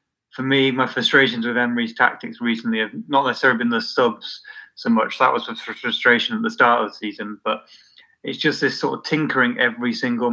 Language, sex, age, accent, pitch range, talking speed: English, male, 20-39, British, 115-145 Hz, 205 wpm